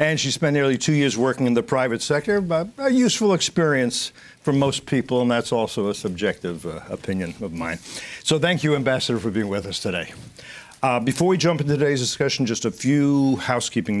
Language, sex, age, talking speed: English, male, 60-79, 200 wpm